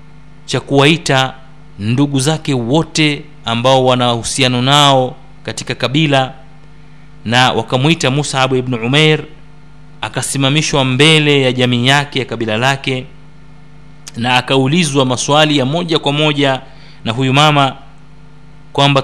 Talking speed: 110 wpm